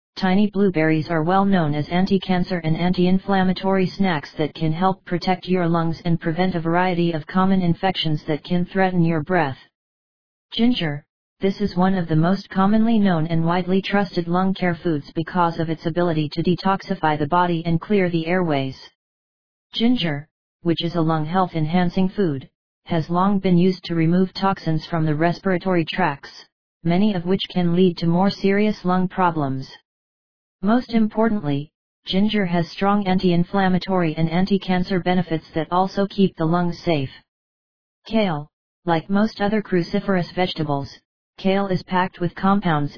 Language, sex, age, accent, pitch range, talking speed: English, female, 40-59, American, 165-190 Hz, 155 wpm